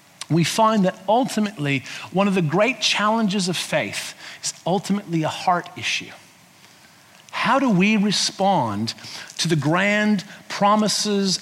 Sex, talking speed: male, 125 wpm